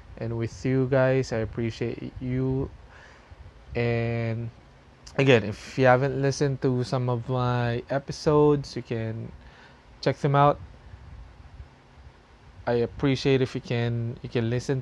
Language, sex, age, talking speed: English, male, 20-39, 125 wpm